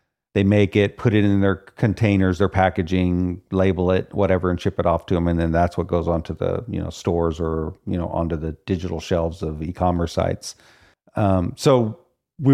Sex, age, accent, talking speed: male, 50-69, American, 200 wpm